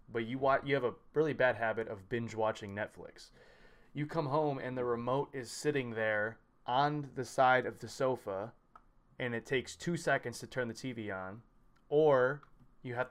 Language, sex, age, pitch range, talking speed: English, male, 20-39, 115-145 Hz, 185 wpm